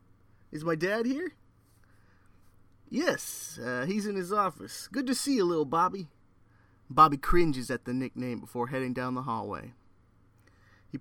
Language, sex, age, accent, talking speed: English, male, 30-49, American, 145 wpm